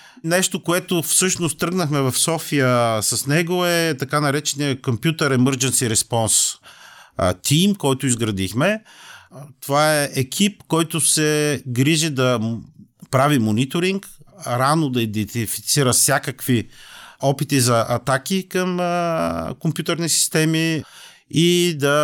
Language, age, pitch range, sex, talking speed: Bulgarian, 40-59, 120-155 Hz, male, 105 wpm